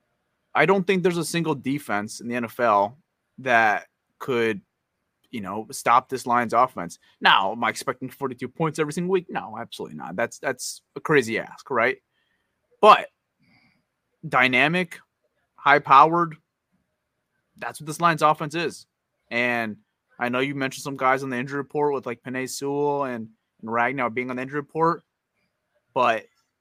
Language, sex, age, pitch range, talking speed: English, male, 30-49, 115-150 Hz, 160 wpm